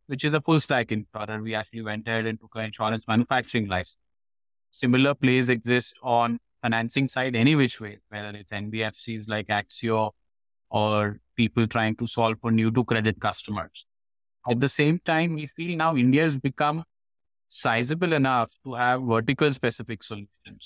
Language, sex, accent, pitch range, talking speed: English, male, Indian, 110-130 Hz, 165 wpm